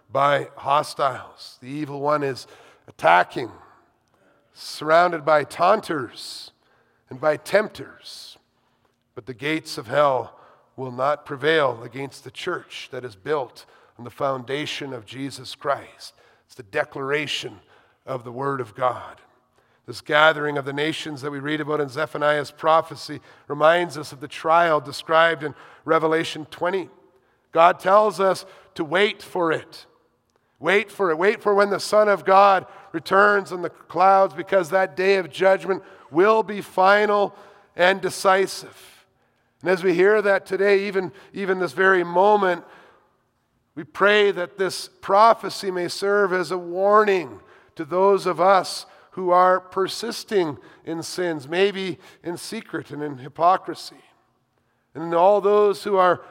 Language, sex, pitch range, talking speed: English, male, 150-195 Hz, 145 wpm